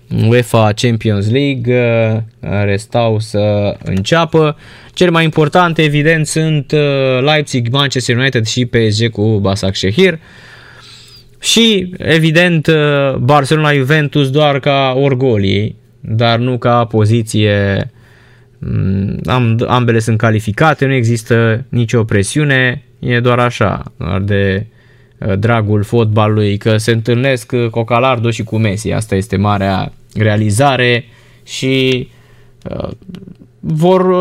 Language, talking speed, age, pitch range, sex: Romanian, 105 wpm, 20-39, 110-140 Hz, male